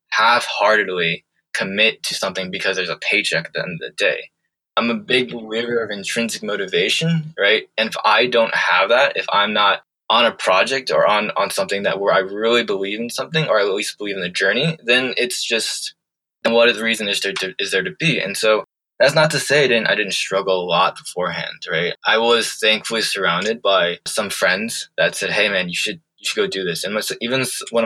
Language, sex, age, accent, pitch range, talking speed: English, male, 20-39, American, 100-130 Hz, 225 wpm